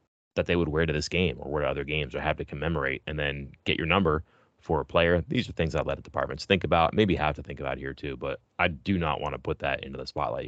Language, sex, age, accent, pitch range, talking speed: English, male, 30-49, American, 75-90 Hz, 290 wpm